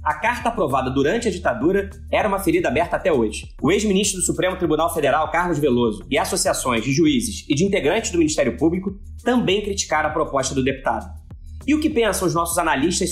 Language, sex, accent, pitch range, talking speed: Portuguese, male, Brazilian, 135-195 Hz, 195 wpm